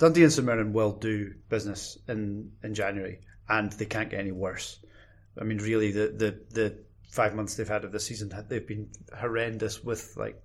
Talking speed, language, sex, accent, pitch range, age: 190 wpm, English, male, British, 105-115 Hz, 30-49